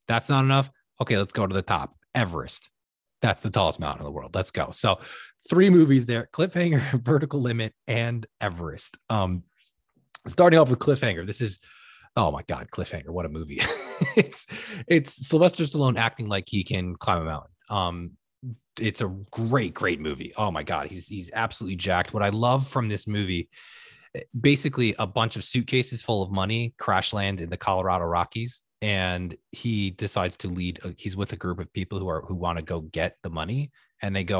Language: English